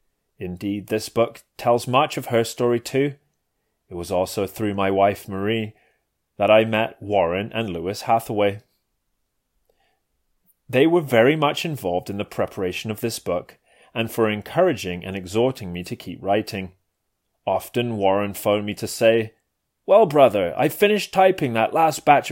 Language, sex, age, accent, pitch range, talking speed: English, male, 30-49, British, 100-135 Hz, 155 wpm